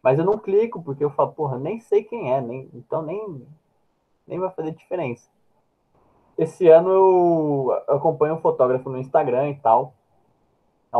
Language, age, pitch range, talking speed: Portuguese, 20-39, 120-160 Hz, 165 wpm